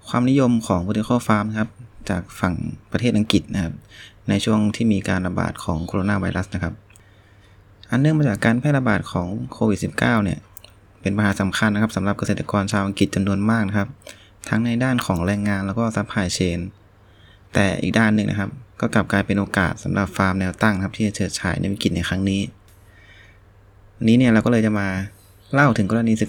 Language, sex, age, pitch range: Thai, male, 20-39, 100-115 Hz